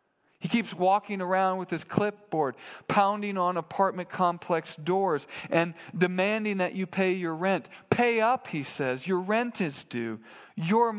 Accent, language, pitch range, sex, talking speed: American, English, 165-210 Hz, male, 155 wpm